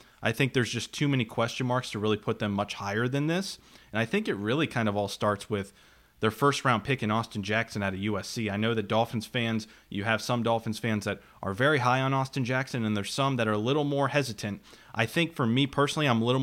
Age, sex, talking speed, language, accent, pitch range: 30-49, male, 255 wpm, English, American, 105-125 Hz